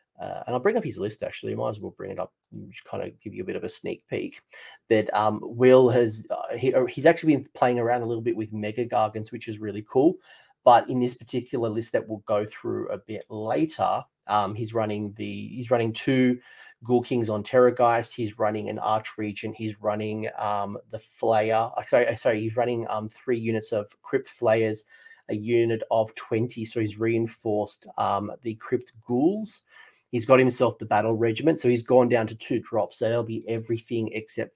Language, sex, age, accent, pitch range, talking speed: English, male, 30-49, Australian, 110-125 Hz, 215 wpm